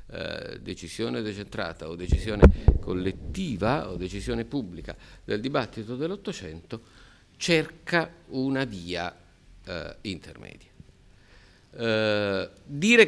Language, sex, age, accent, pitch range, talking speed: Italian, male, 50-69, native, 90-135 Hz, 75 wpm